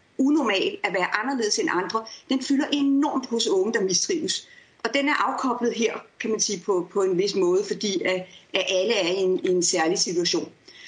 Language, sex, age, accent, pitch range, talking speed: Danish, female, 30-49, native, 215-330 Hz, 200 wpm